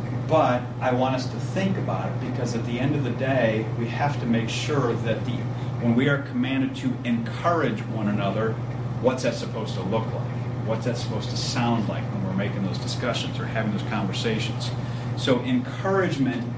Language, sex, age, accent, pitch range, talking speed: English, male, 40-59, American, 120-130 Hz, 190 wpm